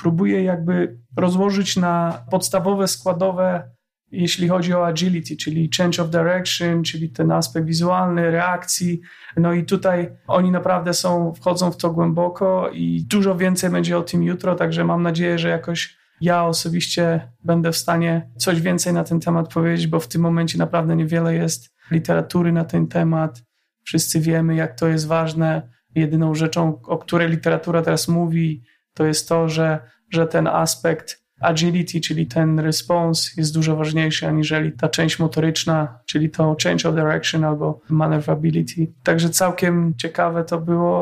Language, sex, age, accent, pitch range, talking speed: Polish, male, 30-49, native, 155-175 Hz, 155 wpm